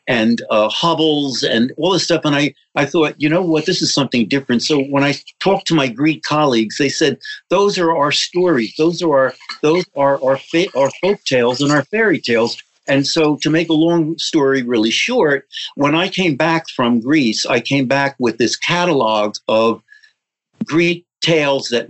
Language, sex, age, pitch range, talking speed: English, male, 60-79, 130-160 Hz, 195 wpm